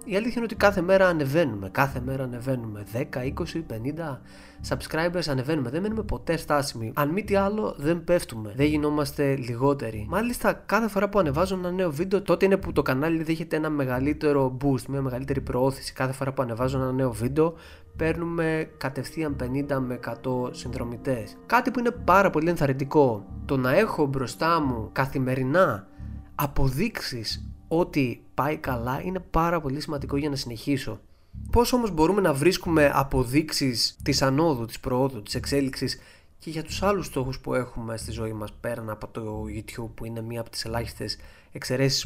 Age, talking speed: 20-39, 165 wpm